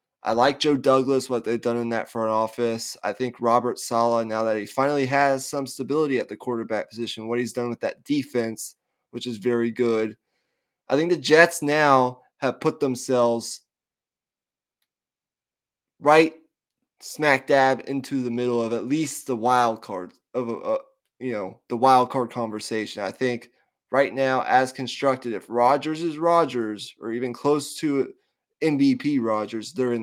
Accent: American